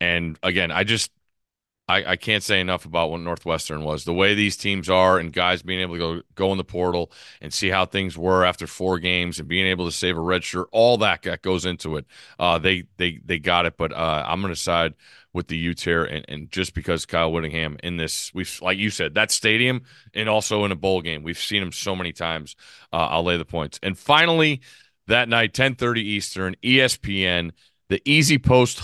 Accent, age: American, 30-49